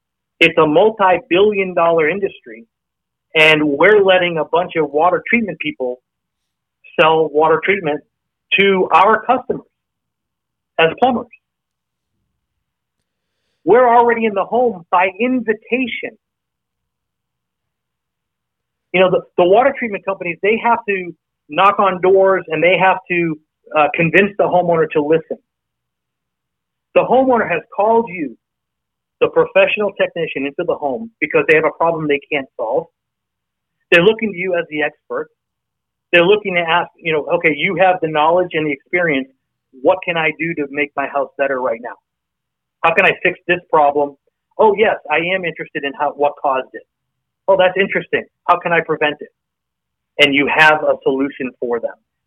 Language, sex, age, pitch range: English, male, 40-59, 140-190 Hz